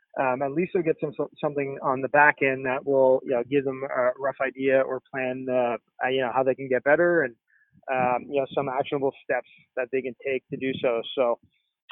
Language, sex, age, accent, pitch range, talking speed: English, male, 20-39, American, 130-145 Hz, 225 wpm